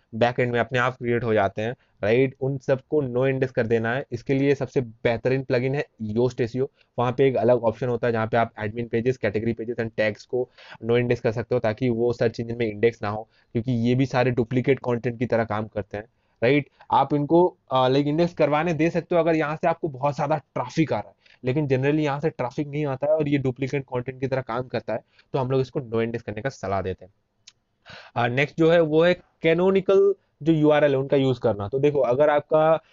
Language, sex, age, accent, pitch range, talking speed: Hindi, male, 20-39, native, 120-150 Hz, 160 wpm